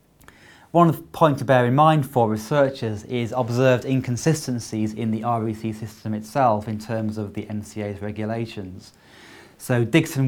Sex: male